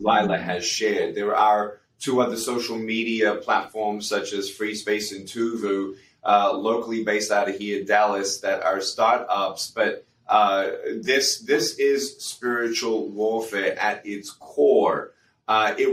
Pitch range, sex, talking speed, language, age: 110-135 Hz, male, 145 wpm, English, 30-49